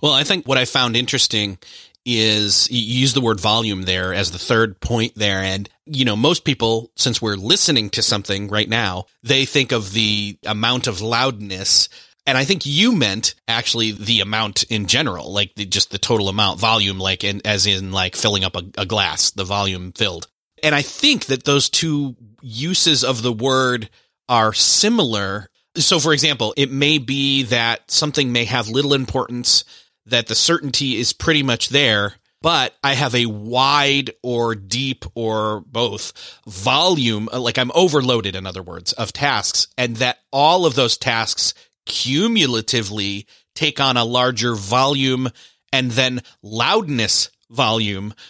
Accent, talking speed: American, 165 wpm